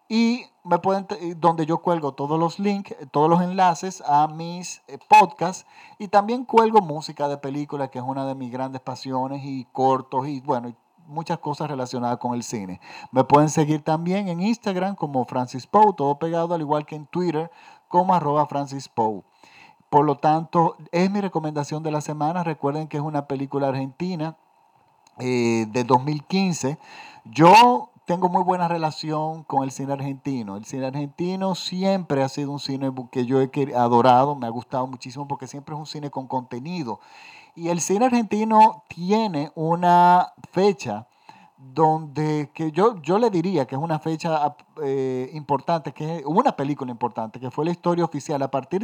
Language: Spanish